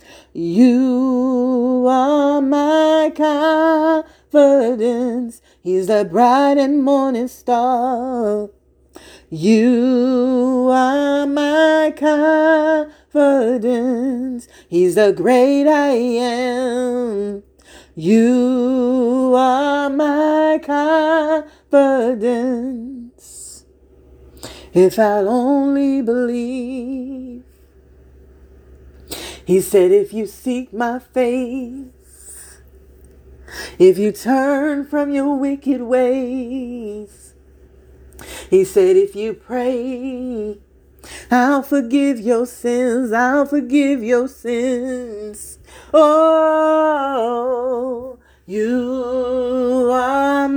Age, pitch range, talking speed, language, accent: 40-59, 220-280 Hz, 70 wpm, English, American